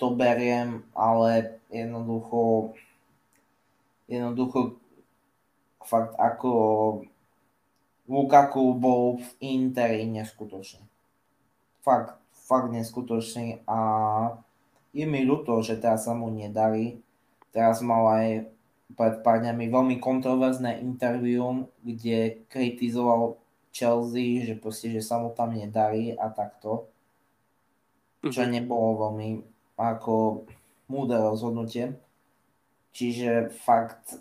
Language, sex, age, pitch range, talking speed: Slovak, male, 20-39, 110-120 Hz, 90 wpm